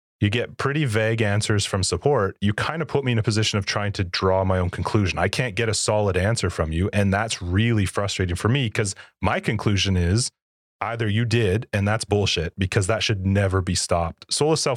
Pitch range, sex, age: 95-120 Hz, male, 30-49